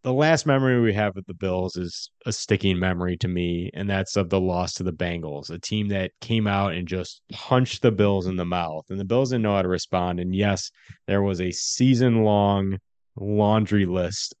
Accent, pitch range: American, 90-100 Hz